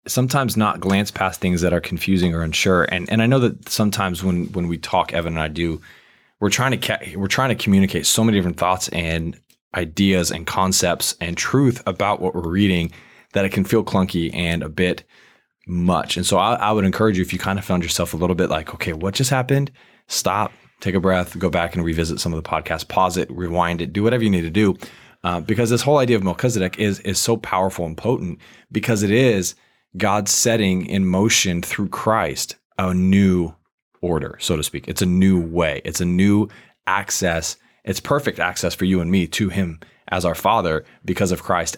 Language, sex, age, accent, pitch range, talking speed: English, male, 20-39, American, 85-105 Hz, 215 wpm